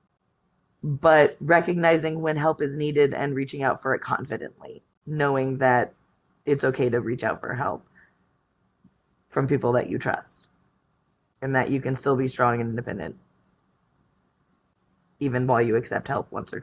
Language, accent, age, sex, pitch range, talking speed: English, American, 20-39, female, 130-170 Hz, 150 wpm